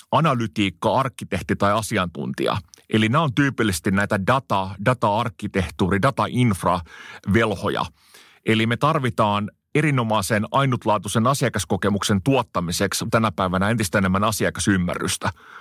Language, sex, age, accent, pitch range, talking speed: Finnish, male, 30-49, native, 100-125 Hz, 95 wpm